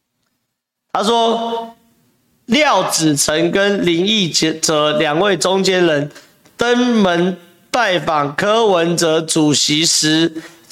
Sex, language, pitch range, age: male, Chinese, 160-205 Hz, 40-59